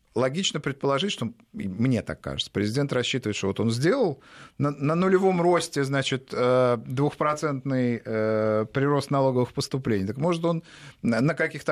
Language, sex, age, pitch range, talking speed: Russian, male, 50-69, 115-160 Hz, 135 wpm